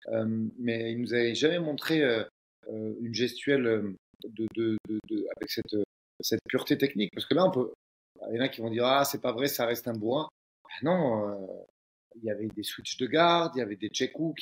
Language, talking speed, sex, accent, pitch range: French, 230 wpm, male, French, 115-150 Hz